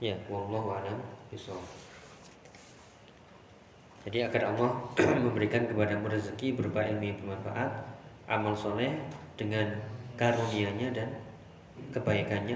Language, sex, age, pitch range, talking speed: Indonesian, male, 20-39, 105-125 Hz, 75 wpm